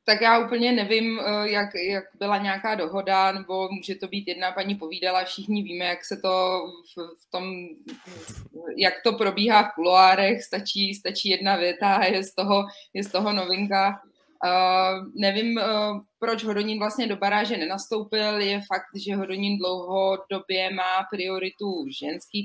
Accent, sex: native, female